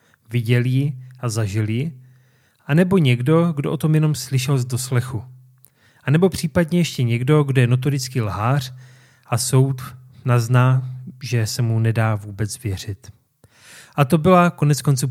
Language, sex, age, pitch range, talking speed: Czech, male, 30-49, 120-140 Hz, 145 wpm